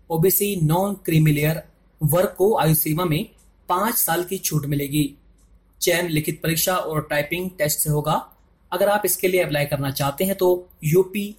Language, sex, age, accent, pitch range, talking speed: Hindi, male, 30-49, native, 150-190 Hz, 160 wpm